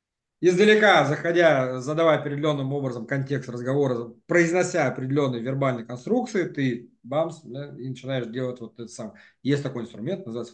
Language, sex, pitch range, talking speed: Russian, male, 125-175 Hz, 135 wpm